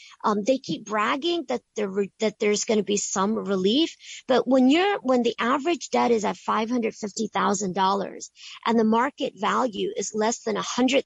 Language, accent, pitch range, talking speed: English, American, 215-265 Hz, 195 wpm